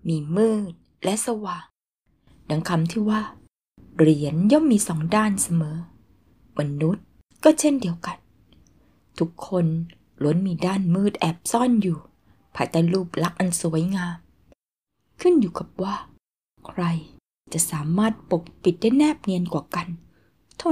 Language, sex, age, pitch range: Thai, female, 20-39, 155-195 Hz